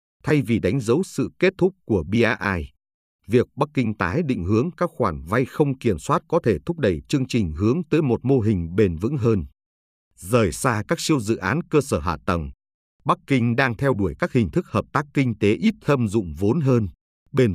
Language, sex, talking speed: Vietnamese, male, 215 wpm